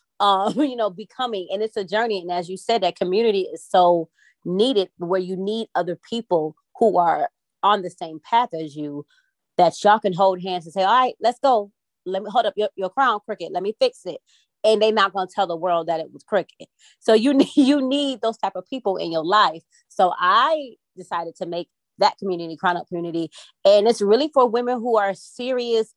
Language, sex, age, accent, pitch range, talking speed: English, female, 30-49, American, 175-230 Hz, 215 wpm